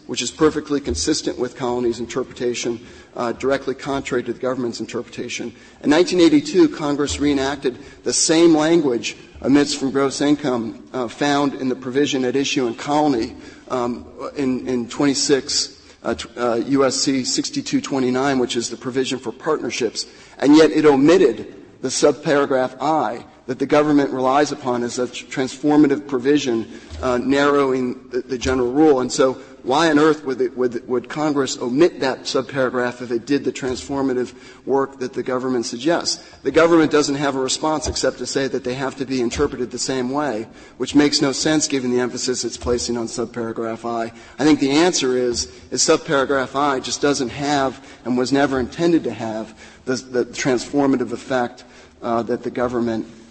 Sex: male